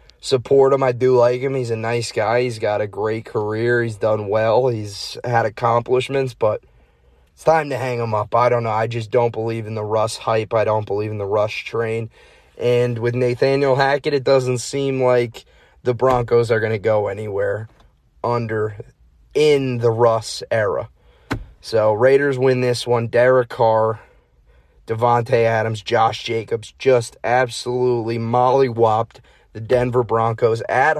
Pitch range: 115-125 Hz